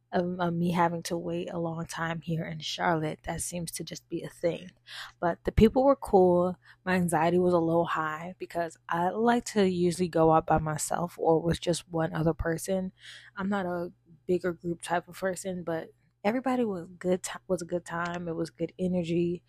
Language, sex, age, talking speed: English, female, 20-39, 195 wpm